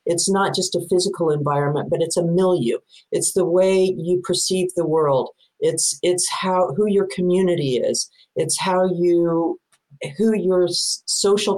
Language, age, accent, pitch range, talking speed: English, 50-69, American, 160-195 Hz, 155 wpm